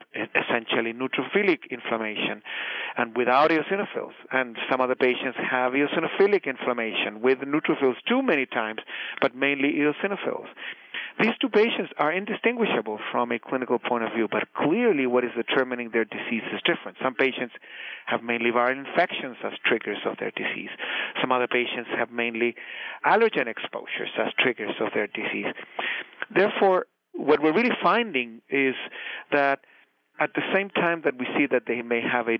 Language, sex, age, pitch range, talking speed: English, male, 40-59, 120-155 Hz, 155 wpm